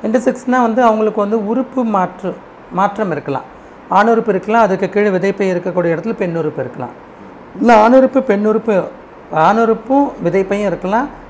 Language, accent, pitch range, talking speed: Tamil, native, 150-210 Hz, 125 wpm